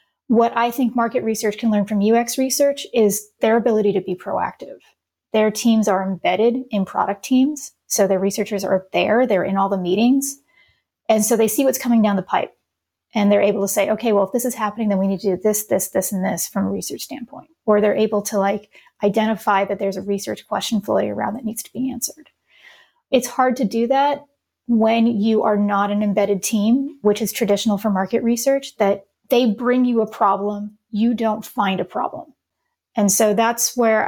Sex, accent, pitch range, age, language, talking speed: female, American, 205-235 Hz, 30-49, English, 210 wpm